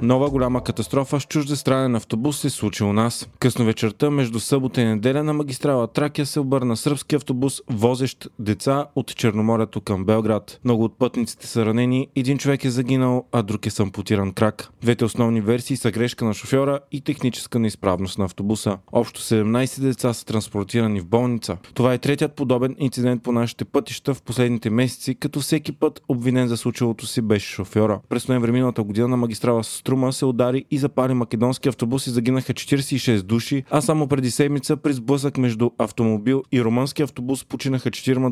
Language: Bulgarian